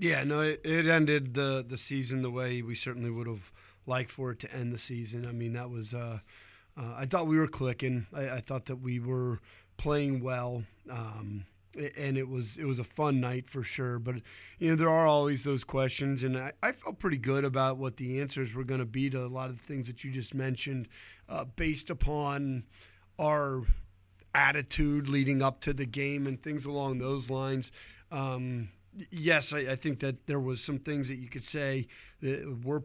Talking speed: 210 wpm